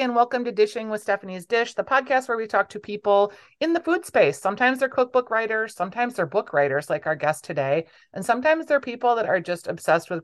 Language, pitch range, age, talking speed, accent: English, 150-200 Hz, 30-49, 225 wpm, American